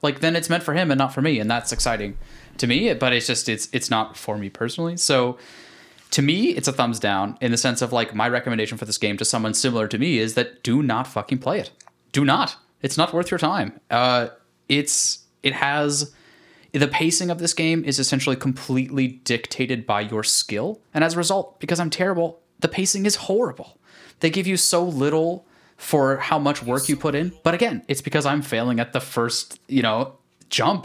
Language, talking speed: English, 215 wpm